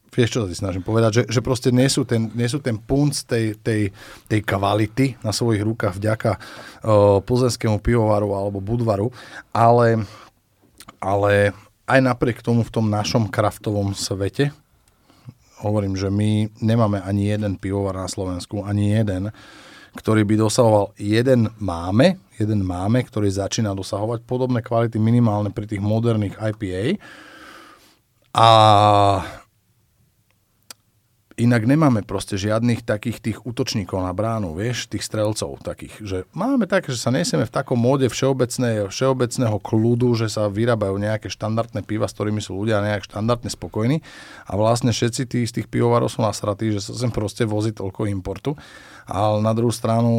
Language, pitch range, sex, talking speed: Slovak, 100-120 Hz, male, 145 wpm